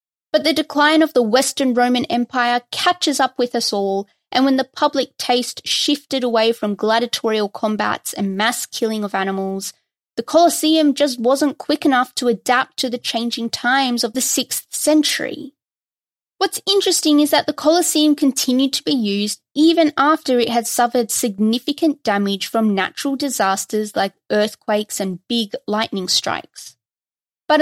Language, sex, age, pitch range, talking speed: English, female, 20-39, 220-275 Hz, 155 wpm